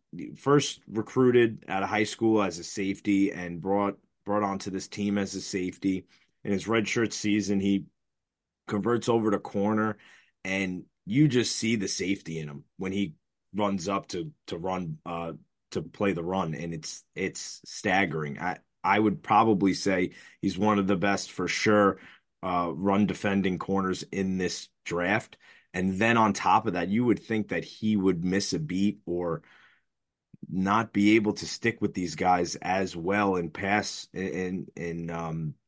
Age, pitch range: 30-49, 90-105 Hz